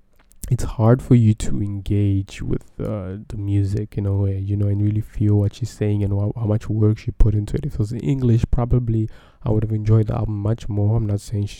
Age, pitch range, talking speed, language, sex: 20-39, 100-115 Hz, 240 wpm, English, male